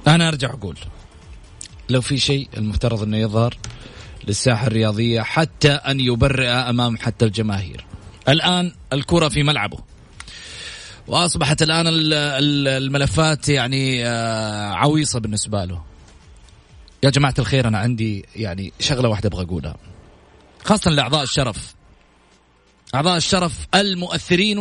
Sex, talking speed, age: male, 105 wpm, 30-49